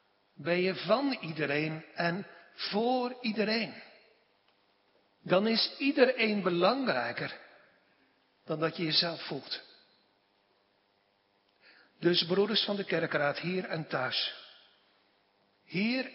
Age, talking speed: 60-79, 95 wpm